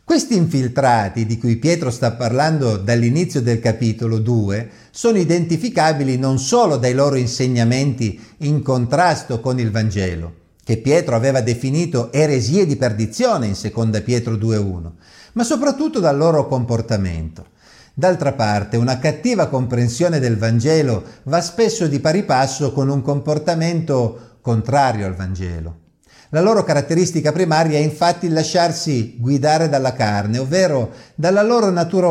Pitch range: 115-175 Hz